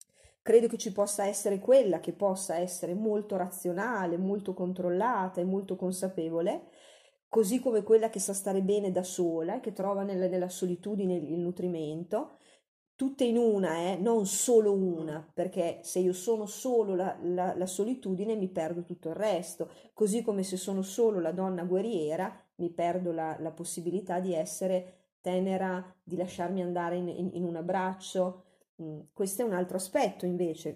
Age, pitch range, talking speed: 30-49, 175-205 Hz, 165 wpm